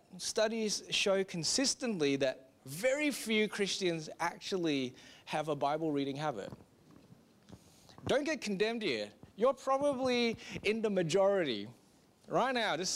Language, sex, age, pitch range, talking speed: English, male, 30-49, 165-225 Hz, 115 wpm